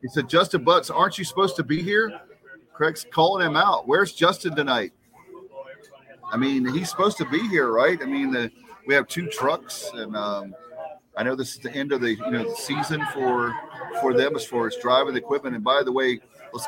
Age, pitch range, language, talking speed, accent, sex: 40-59, 120-155 Hz, English, 215 wpm, American, male